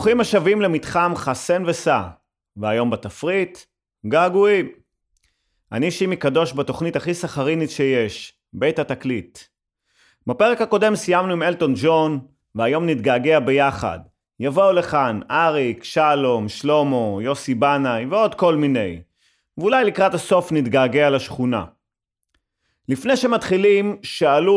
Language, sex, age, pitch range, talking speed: Hebrew, male, 30-49, 115-175 Hz, 105 wpm